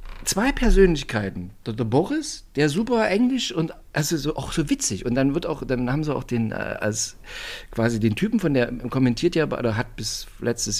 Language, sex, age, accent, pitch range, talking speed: German, male, 50-69, German, 125-200 Hz, 195 wpm